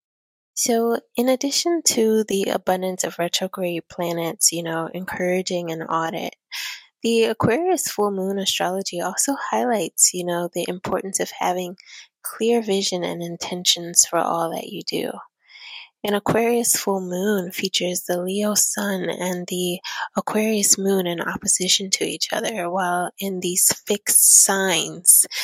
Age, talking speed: 20-39, 135 wpm